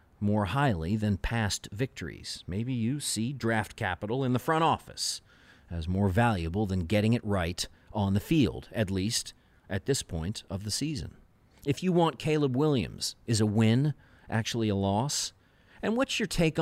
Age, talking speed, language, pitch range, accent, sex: 40-59, 170 wpm, English, 100-135 Hz, American, male